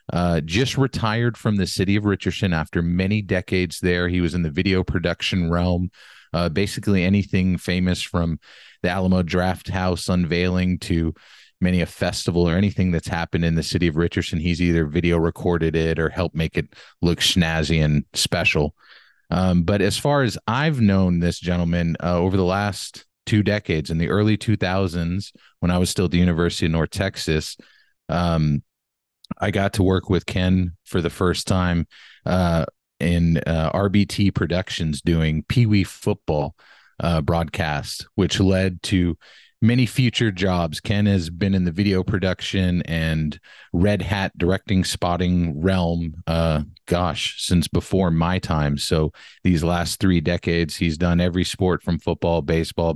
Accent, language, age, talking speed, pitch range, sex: American, English, 30-49, 160 wpm, 85-95 Hz, male